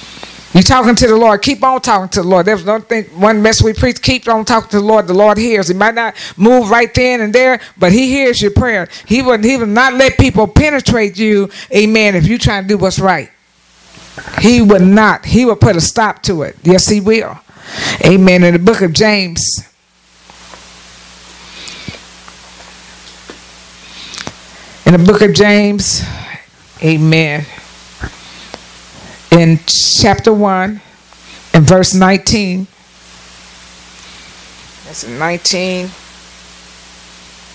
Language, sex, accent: English, female, American